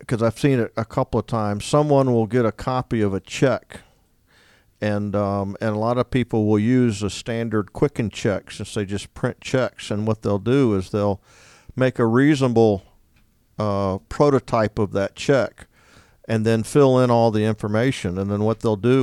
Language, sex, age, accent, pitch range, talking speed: English, male, 50-69, American, 105-125 Hz, 190 wpm